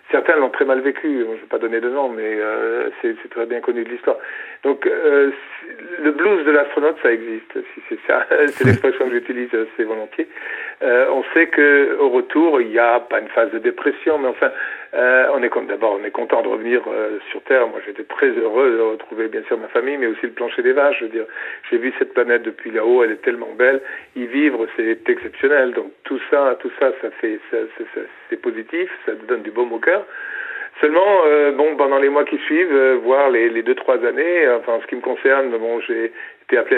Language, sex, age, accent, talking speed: French, male, 50-69, French, 230 wpm